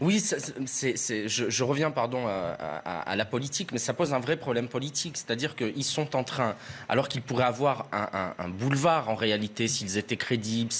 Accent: French